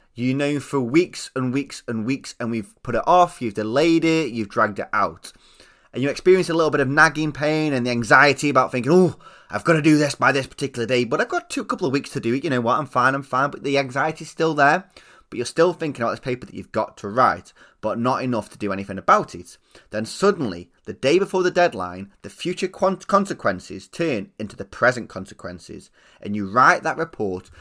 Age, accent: 20-39, British